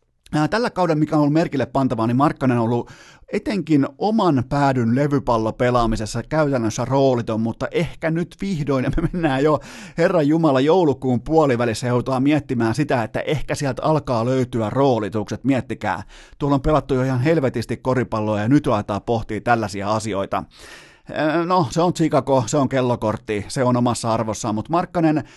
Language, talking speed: Finnish, 155 wpm